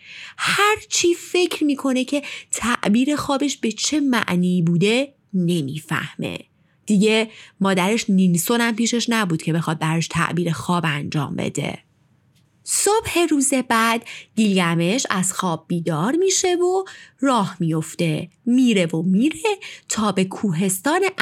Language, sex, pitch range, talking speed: Persian, female, 170-265 Hz, 115 wpm